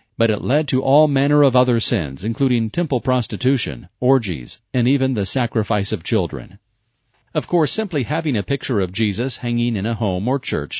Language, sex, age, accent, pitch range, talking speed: English, male, 40-59, American, 105-130 Hz, 185 wpm